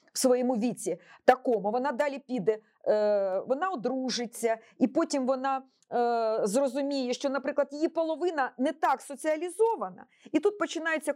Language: Ukrainian